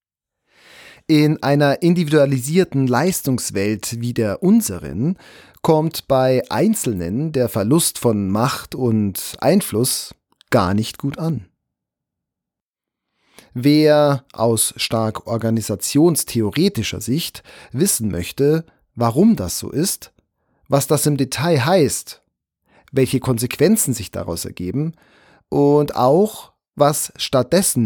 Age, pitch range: 40-59, 110-150 Hz